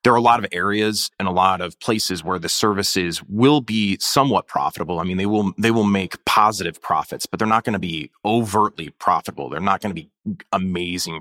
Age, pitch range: 30-49, 90-110 Hz